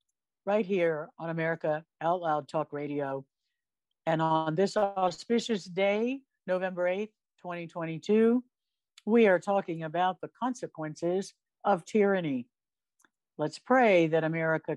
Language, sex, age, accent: English, female, 60-79, American